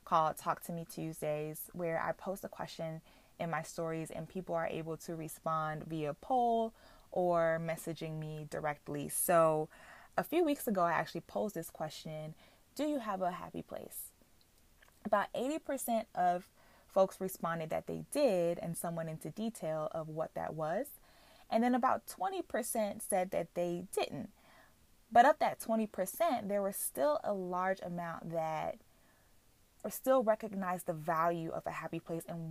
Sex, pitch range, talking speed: female, 160-205 Hz, 160 wpm